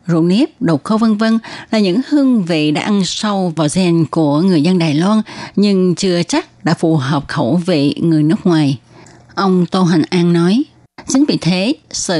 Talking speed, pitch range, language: 195 wpm, 155-205 Hz, Vietnamese